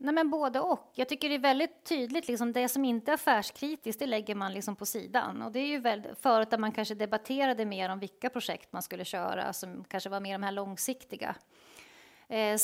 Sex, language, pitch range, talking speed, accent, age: female, Swedish, 200-250 Hz, 220 wpm, native, 30-49